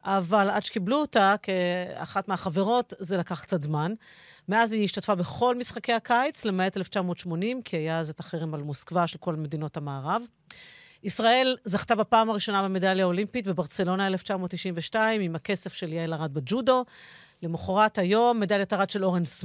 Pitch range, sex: 175-215 Hz, female